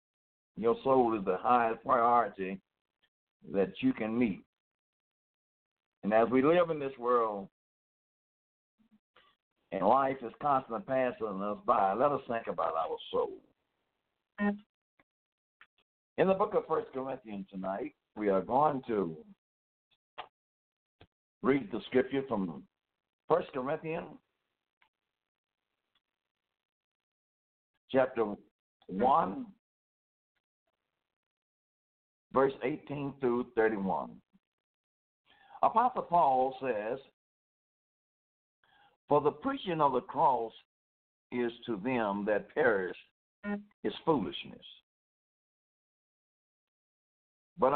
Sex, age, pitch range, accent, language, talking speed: male, 60-79, 105-155 Hz, American, English, 90 wpm